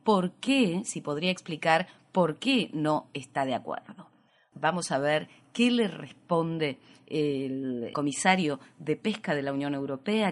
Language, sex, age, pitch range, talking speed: Spanish, female, 30-49, 150-215 Hz, 145 wpm